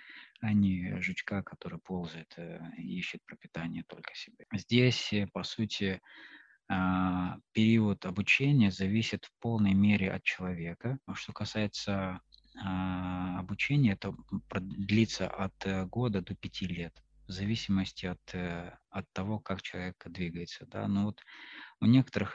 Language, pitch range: Russian, 90-105 Hz